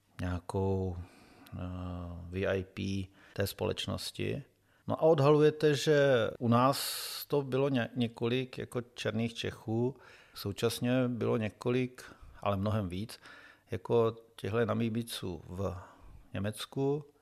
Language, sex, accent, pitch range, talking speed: Czech, male, native, 105-130 Hz, 100 wpm